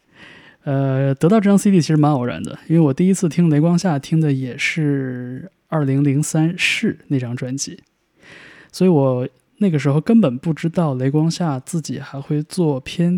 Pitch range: 135-165 Hz